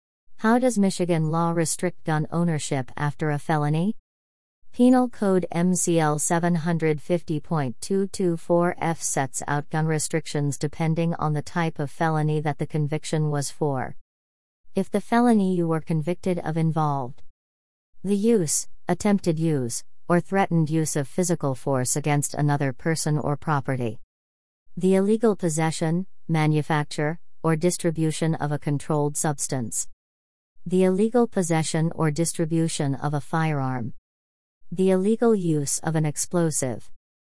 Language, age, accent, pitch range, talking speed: English, 40-59, American, 135-175 Hz, 120 wpm